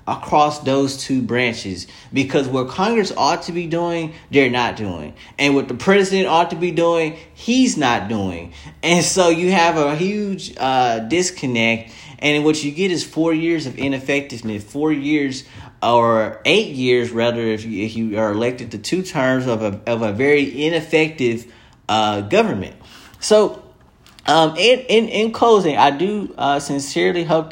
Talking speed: 165 wpm